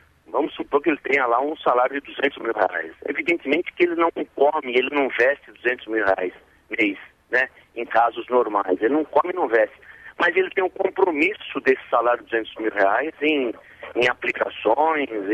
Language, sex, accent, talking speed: Portuguese, male, Brazilian, 190 wpm